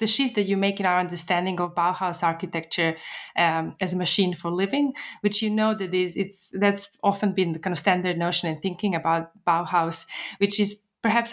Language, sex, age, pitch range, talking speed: English, female, 20-39, 170-205 Hz, 200 wpm